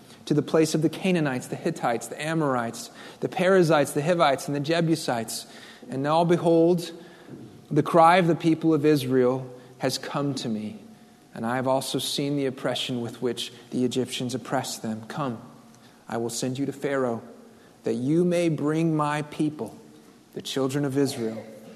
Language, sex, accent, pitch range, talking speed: English, male, American, 125-160 Hz, 170 wpm